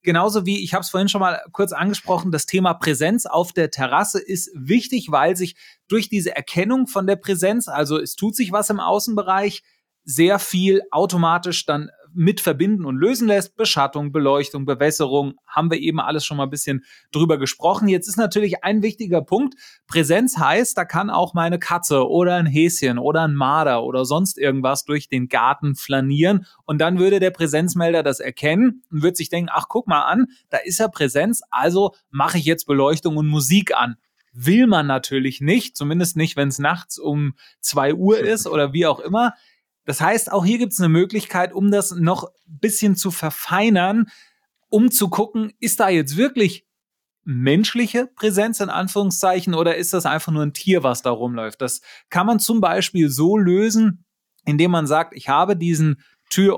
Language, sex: German, male